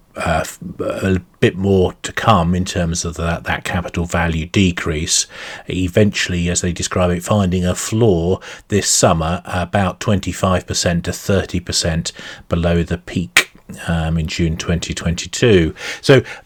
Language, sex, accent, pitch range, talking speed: English, male, British, 90-105 Hz, 125 wpm